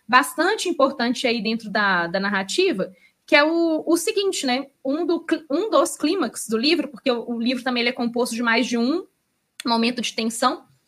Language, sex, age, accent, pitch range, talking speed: Portuguese, female, 20-39, Brazilian, 220-290 Hz, 195 wpm